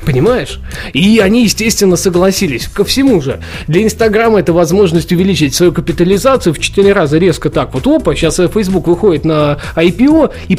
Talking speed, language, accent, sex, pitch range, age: 160 wpm, Russian, native, male, 150-195 Hz, 20-39